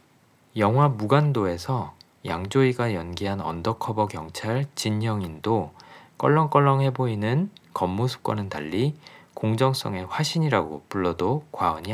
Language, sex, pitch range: Korean, male, 95-135 Hz